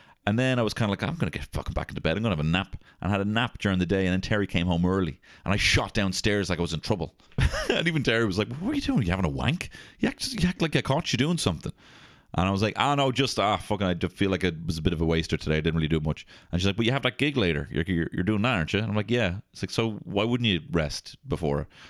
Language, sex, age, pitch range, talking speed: English, male, 30-49, 85-120 Hz, 335 wpm